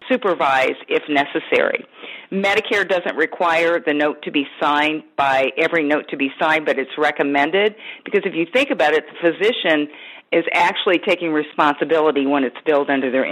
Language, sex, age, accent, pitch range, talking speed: English, female, 50-69, American, 155-200 Hz, 165 wpm